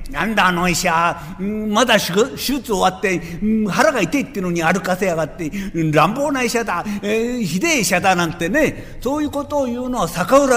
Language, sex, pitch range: Japanese, male, 170-240 Hz